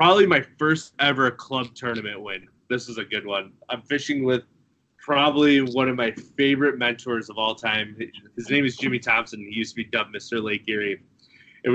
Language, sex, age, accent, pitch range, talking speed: English, male, 20-39, American, 115-135 Hz, 195 wpm